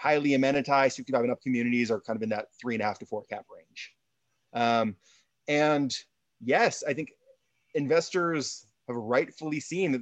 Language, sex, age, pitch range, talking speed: English, male, 30-49, 120-150 Hz, 180 wpm